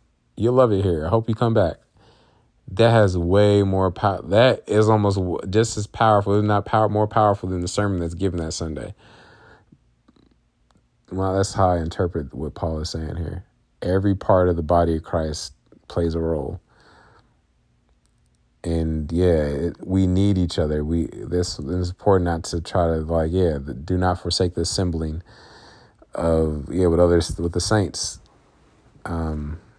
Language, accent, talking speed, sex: English, American, 165 wpm, male